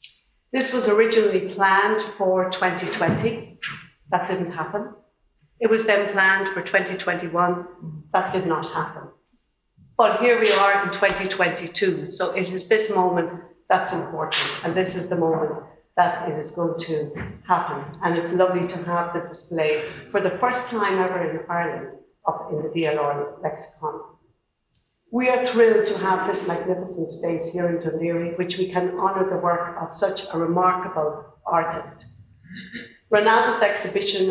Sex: female